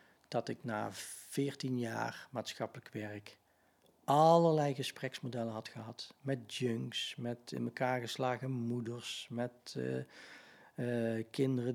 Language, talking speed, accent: English, 110 wpm, Dutch